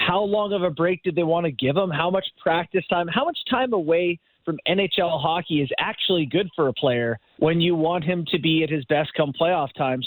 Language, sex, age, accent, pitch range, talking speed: English, male, 30-49, American, 155-195 Hz, 240 wpm